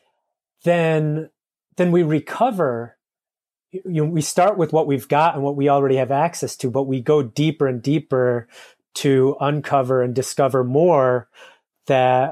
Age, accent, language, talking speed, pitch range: 30-49, American, English, 150 wpm, 125-150 Hz